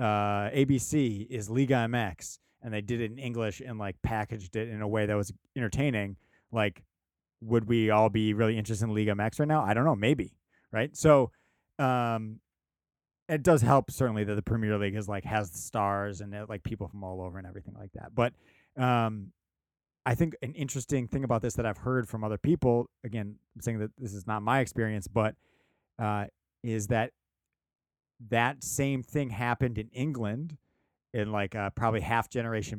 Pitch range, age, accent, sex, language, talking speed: 105-120 Hz, 30-49, American, male, English, 185 wpm